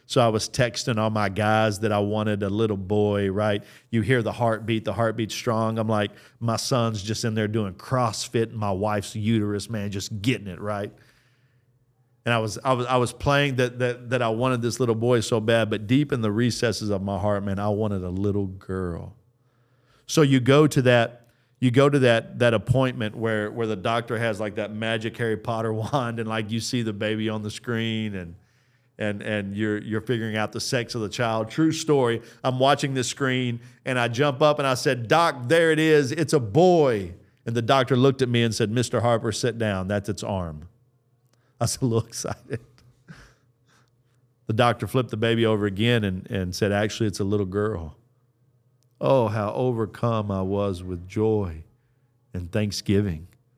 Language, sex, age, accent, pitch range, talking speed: English, male, 40-59, American, 105-125 Hz, 200 wpm